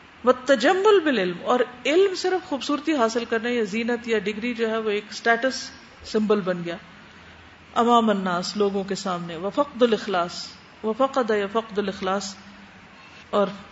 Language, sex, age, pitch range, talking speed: Urdu, female, 40-59, 195-240 Hz, 130 wpm